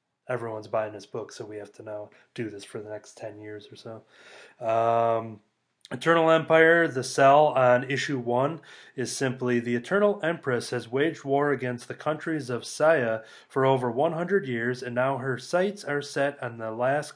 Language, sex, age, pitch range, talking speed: English, male, 30-49, 115-140 Hz, 180 wpm